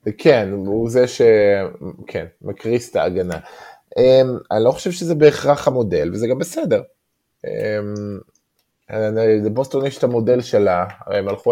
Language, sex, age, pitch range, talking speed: Hebrew, male, 20-39, 100-140 Hz, 135 wpm